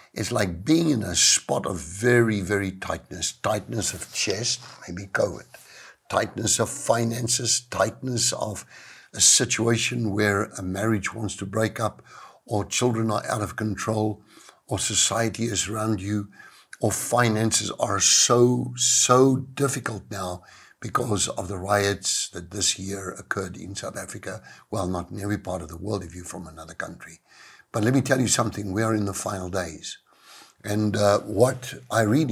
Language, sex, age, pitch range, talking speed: English, male, 60-79, 100-120 Hz, 165 wpm